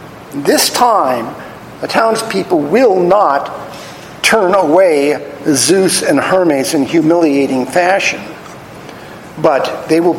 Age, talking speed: 50-69, 100 wpm